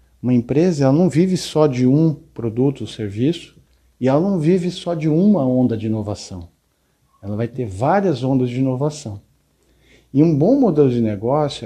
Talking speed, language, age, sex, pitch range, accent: 170 wpm, Portuguese, 50-69, male, 115-155 Hz, Brazilian